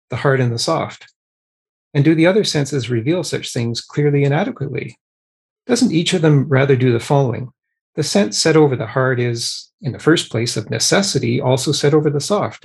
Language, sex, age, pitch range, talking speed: English, male, 40-59, 125-155 Hz, 200 wpm